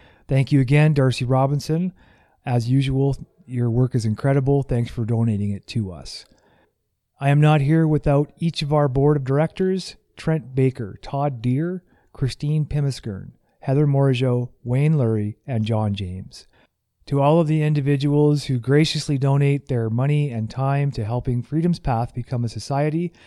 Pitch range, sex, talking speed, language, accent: 115-145 Hz, male, 155 wpm, English, American